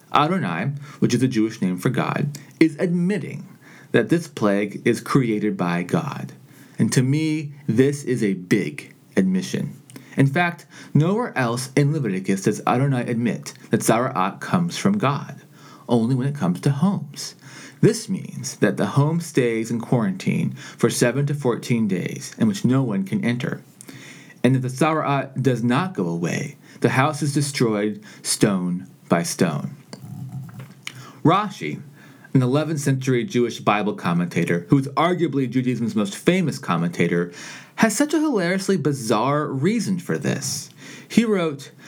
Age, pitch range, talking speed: 40-59, 120-165 Hz, 150 wpm